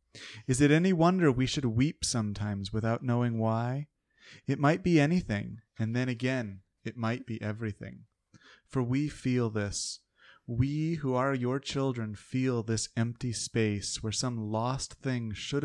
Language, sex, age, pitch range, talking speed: English, male, 30-49, 105-130 Hz, 155 wpm